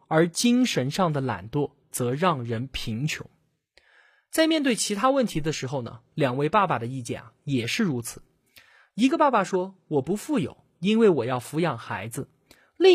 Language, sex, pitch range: Chinese, male, 145-225 Hz